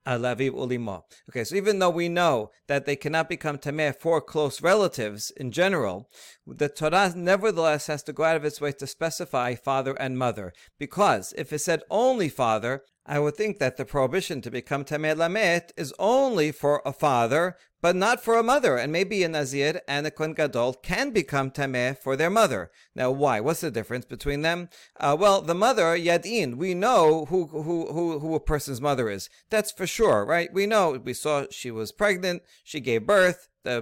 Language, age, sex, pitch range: English, 40-59, male, 140-175 Hz